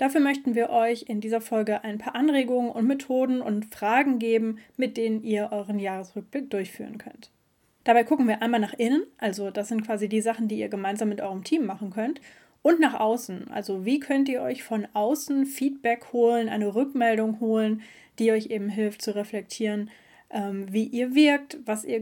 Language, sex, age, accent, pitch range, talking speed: German, female, 10-29, German, 210-250 Hz, 185 wpm